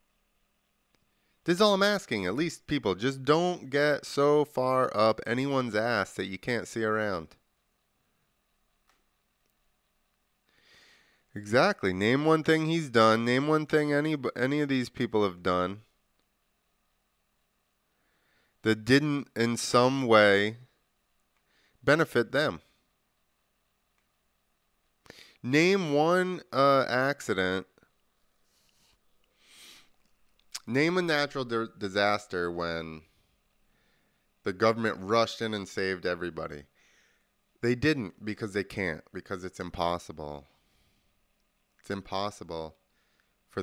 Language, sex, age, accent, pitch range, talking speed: English, male, 30-49, American, 95-140 Hz, 100 wpm